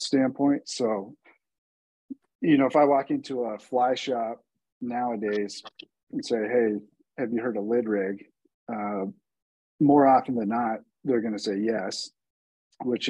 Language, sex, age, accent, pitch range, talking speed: English, male, 40-59, American, 105-125 Hz, 140 wpm